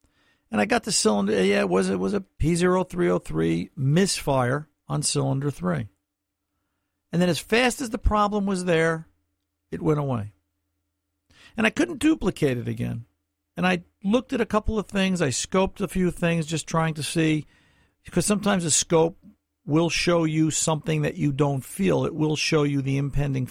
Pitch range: 115-175 Hz